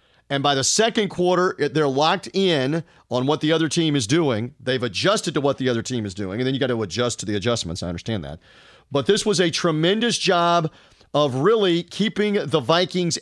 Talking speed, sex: 215 wpm, male